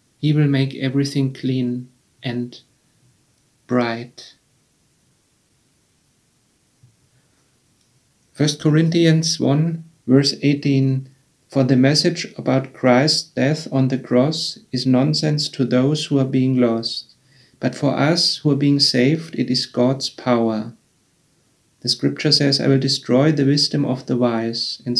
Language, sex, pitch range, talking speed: English, male, 125-145 Hz, 125 wpm